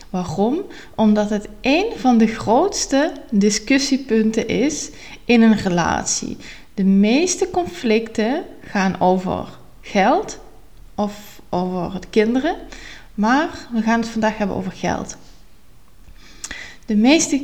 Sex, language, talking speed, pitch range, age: female, Dutch, 105 wpm, 185-230 Hz, 20-39